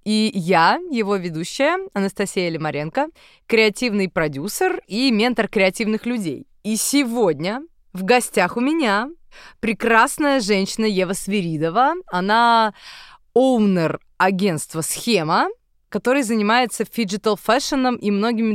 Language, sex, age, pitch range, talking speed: Russian, female, 20-39, 185-245 Hz, 105 wpm